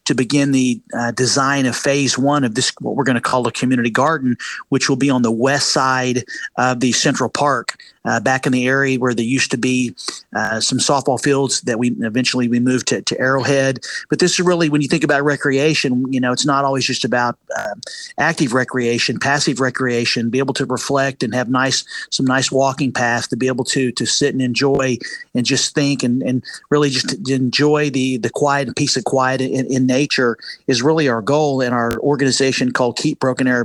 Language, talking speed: English, 215 wpm